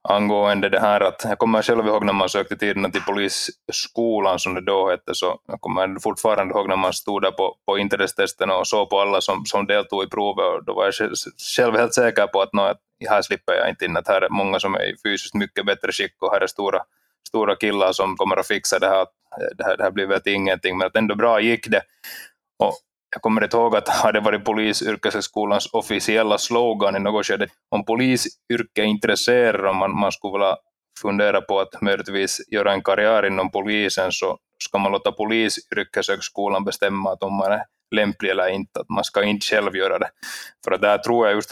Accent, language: native, Finnish